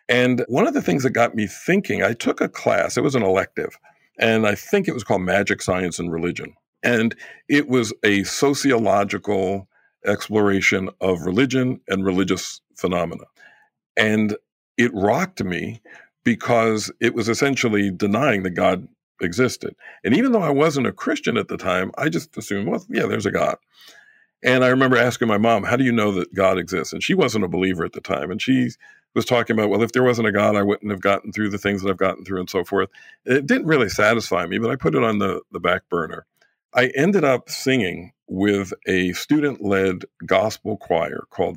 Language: English